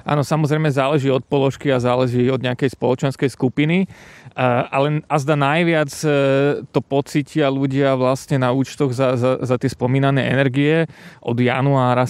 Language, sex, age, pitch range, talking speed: Slovak, male, 30-49, 130-150 Hz, 140 wpm